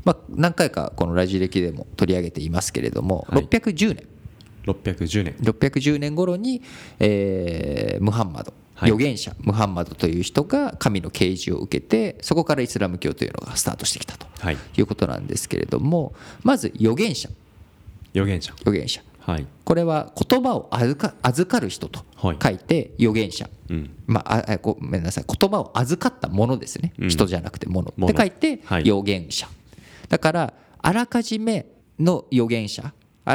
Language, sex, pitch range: Japanese, male, 95-160 Hz